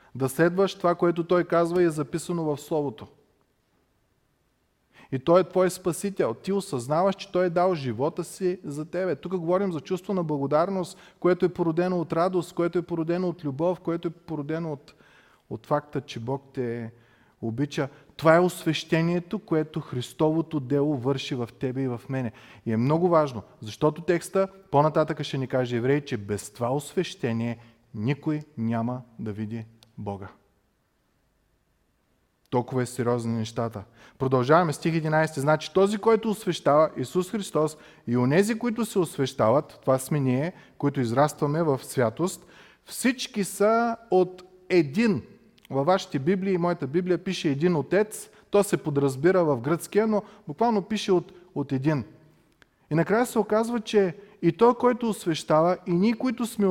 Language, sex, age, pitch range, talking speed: Bulgarian, male, 30-49, 135-185 Hz, 155 wpm